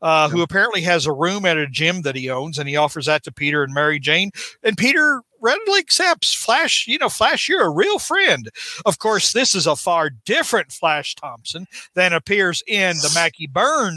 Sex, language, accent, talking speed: male, English, American, 205 wpm